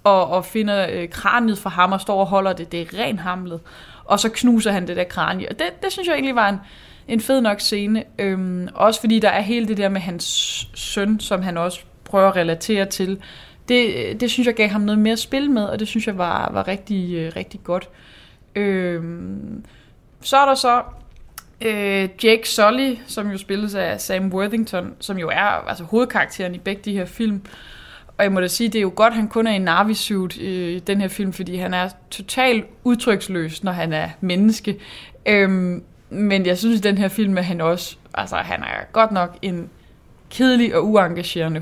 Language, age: Danish, 20-39